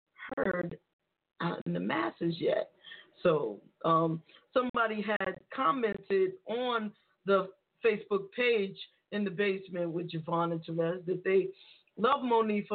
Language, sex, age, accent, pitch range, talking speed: English, female, 40-59, American, 175-220 Hz, 120 wpm